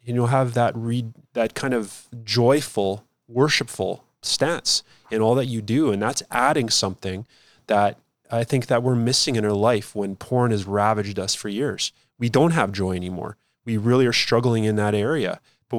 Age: 20-39